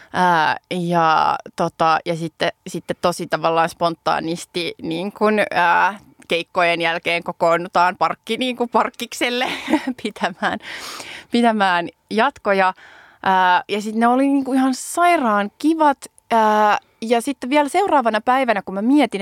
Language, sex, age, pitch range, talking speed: Finnish, female, 20-39, 190-265 Hz, 130 wpm